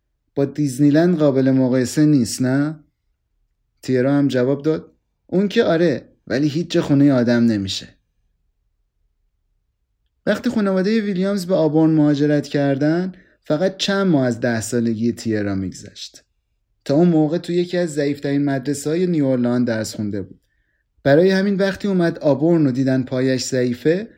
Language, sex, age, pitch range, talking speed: Persian, male, 30-49, 125-165 Hz, 140 wpm